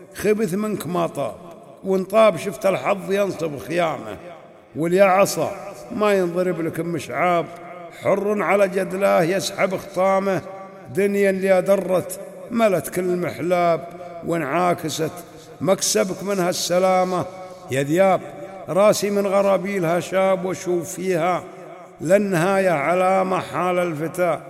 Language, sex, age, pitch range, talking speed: Arabic, male, 60-79, 170-190 Hz, 105 wpm